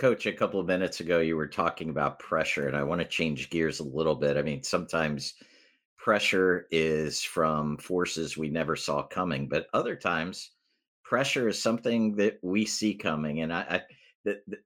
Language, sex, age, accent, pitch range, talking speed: English, male, 50-69, American, 80-105 Hz, 190 wpm